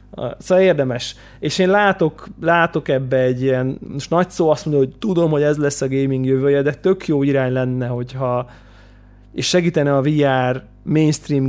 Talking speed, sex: 170 wpm, male